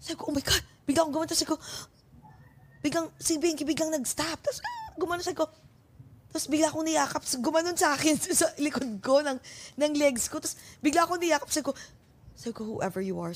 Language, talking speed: Filipino, 210 wpm